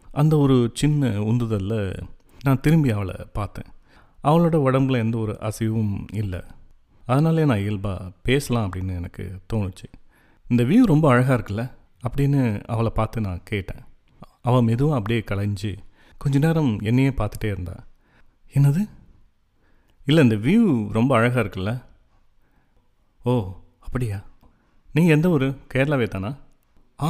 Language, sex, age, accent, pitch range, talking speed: Tamil, male, 30-49, native, 100-135 Hz, 120 wpm